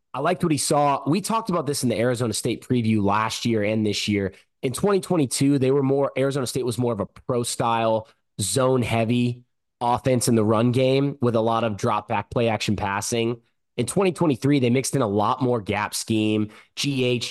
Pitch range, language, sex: 115-140 Hz, English, male